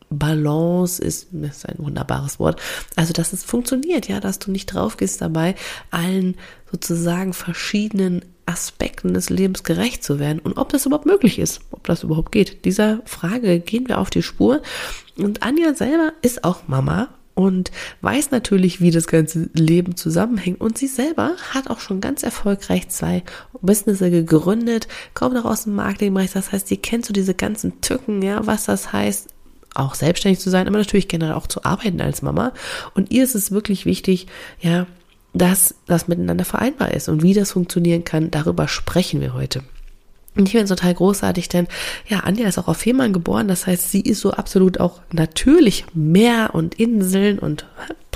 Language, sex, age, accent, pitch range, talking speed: German, female, 20-39, German, 165-215 Hz, 180 wpm